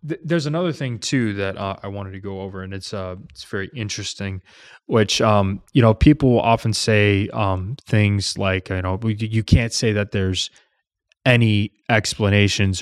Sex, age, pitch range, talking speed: male, 20-39, 95-105 Hz, 170 wpm